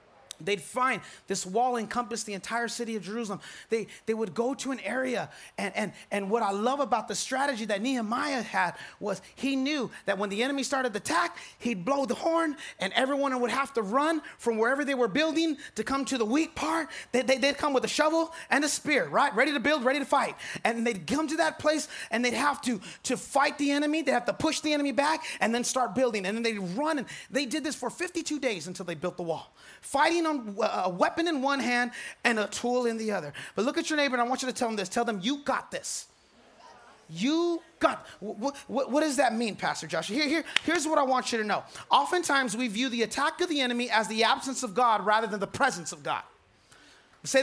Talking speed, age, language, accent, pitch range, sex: 240 wpm, 30-49, English, American, 225-290 Hz, male